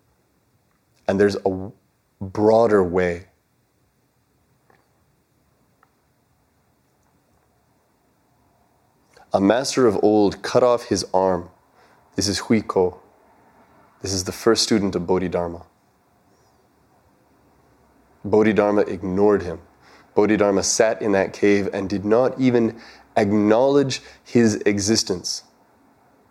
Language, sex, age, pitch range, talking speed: English, male, 30-49, 90-115 Hz, 85 wpm